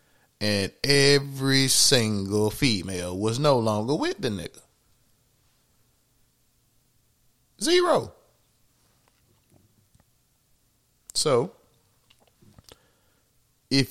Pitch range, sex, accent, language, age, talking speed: 105-125 Hz, male, American, English, 20-39, 55 wpm